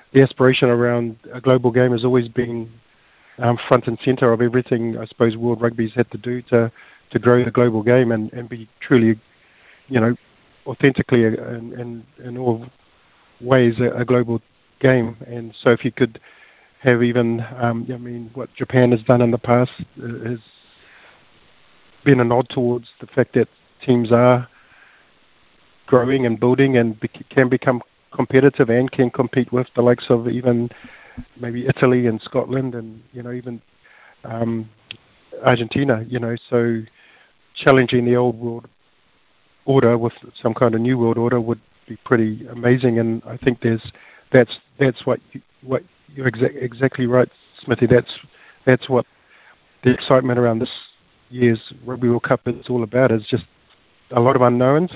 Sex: male